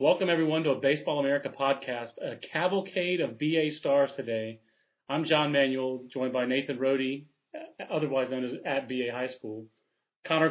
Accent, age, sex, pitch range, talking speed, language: American, 30-49, male, 130-160 Hz, 160 wpm, English